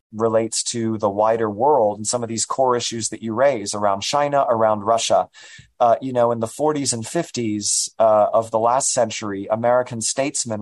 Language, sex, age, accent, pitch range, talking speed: English, male, 30-49, American, 110-125 Hz, 185 wpm